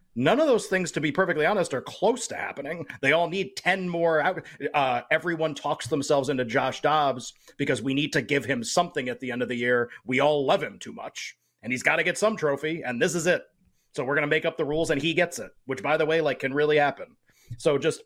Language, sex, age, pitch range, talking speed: English, male, 30-49, 130-170 Hz, 255 wpm